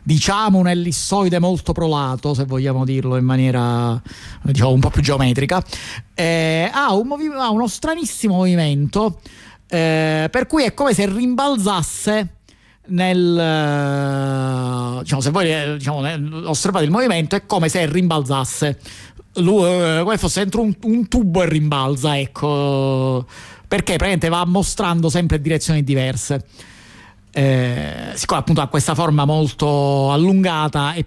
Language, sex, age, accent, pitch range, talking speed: Italian, male, 50-69, native, 130-175 Hz, 135 wpm